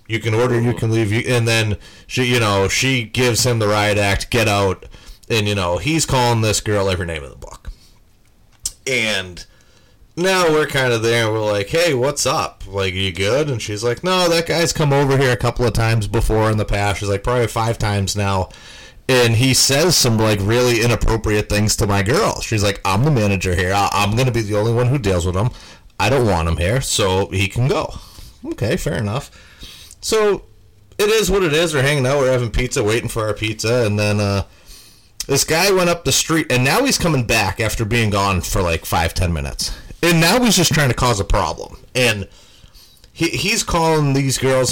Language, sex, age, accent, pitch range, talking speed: English, male, 30-49, American, 100-135 Hz, 220 wpm